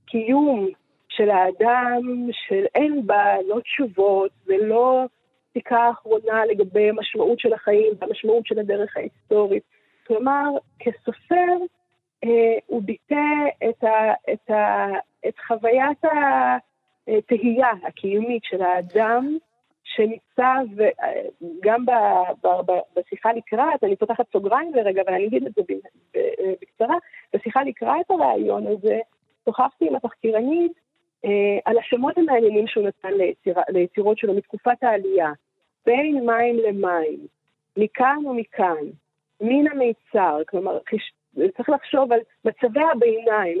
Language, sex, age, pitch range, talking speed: Hebrew, female, 30-49, 210-295 Hz, 110 wpm